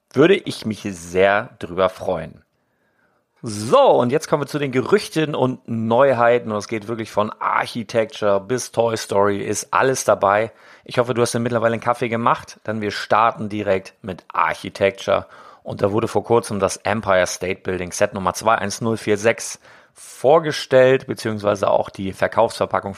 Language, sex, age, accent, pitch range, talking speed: German, male, 40-59, German, 100-120 Hz, 155 wpm